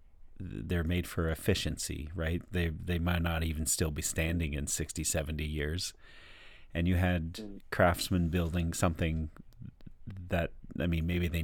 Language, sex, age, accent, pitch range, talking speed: English, male, 40-59, American, 80-90 Hz, 145 wpm